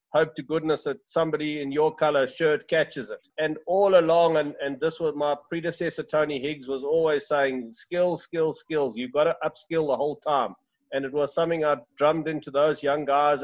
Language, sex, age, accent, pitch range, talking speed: English, male, 50-69, South African, 140-165 Hz, 200 wpm